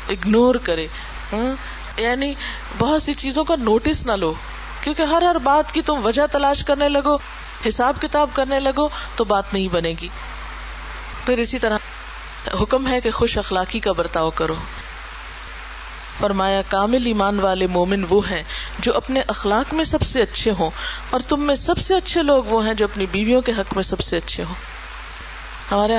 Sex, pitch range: female, 200-265 Hz